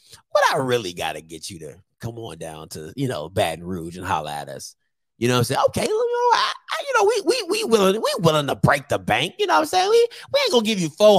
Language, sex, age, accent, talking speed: English, male, 30-49, American, 285 wpm